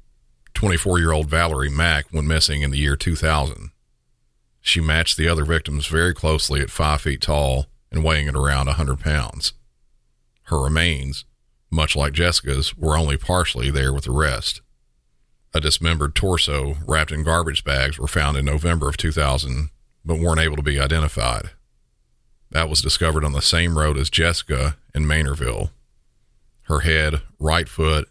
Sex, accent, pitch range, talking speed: male, American, 70-80 Hz, 155 wpm